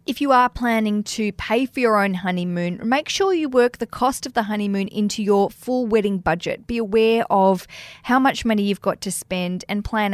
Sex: female